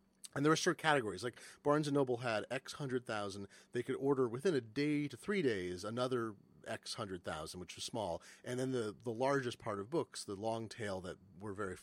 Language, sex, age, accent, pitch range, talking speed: English, male, 40-59, American, 95-130 Hz, 210 wpm